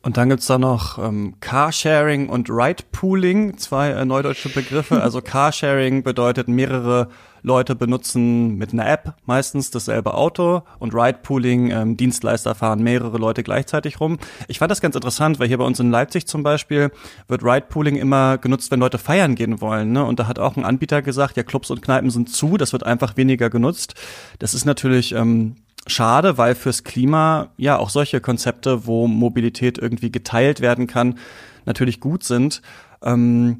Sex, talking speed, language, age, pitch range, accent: male, 175 wpm, German, 30-49, 115-135 Hz, German